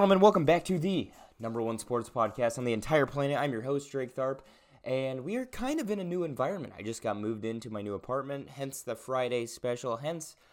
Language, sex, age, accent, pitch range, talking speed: English, male, 20-39, American, 95-125 Hz, 235 wpm